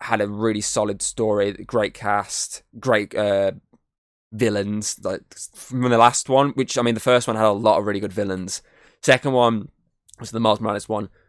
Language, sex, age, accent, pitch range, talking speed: English, male, 10-29, British, 100-120 Hz, 190 wpm